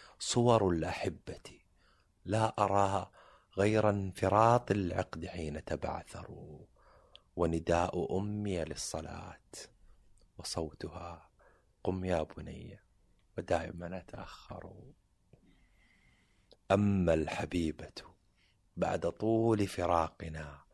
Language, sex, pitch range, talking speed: Arabic, male, 80-100 Hz, 65 wpm